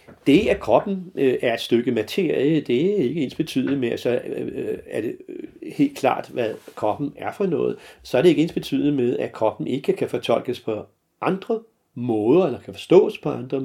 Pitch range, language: 110-175 Hz, Danish